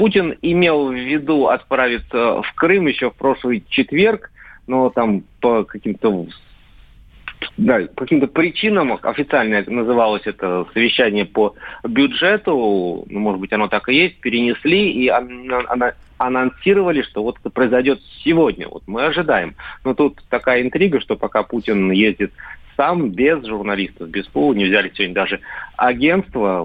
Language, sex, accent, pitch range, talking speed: Russian, male, native, 95-130 Hz, 135 wpm